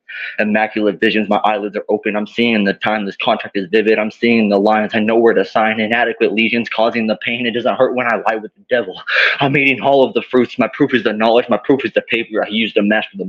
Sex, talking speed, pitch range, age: male, 260 wpm, 105-125 Hz, 20-39